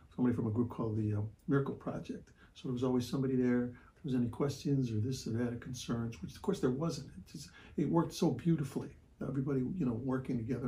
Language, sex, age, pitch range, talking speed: English, male, 60-79, 120-145 Hz, 230 wpm